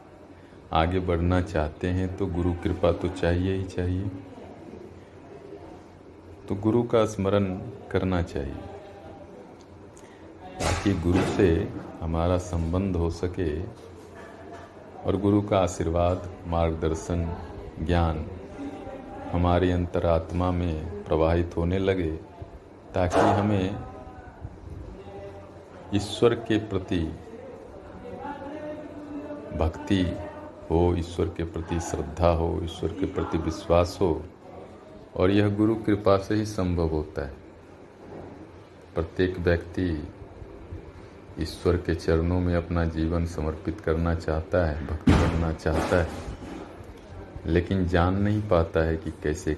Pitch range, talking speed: 85-100 Hz, 105 wpm